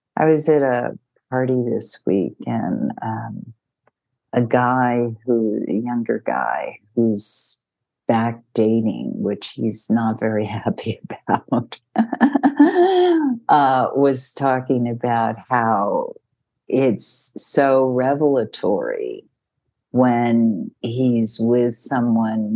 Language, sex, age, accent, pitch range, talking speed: English, female, 50-69, American, 115-140 Hz, 95 wpm